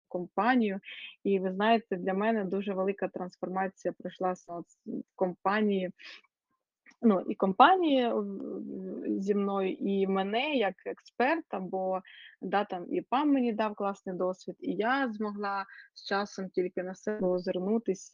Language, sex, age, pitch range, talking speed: Ukrainian, female, 20-39, 185-220 Hz, 125 wpm